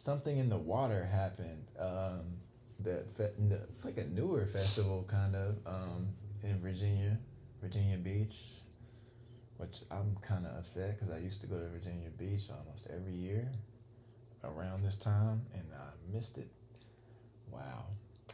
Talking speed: 145 wpm